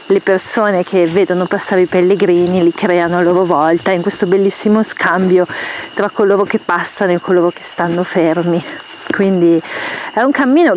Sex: female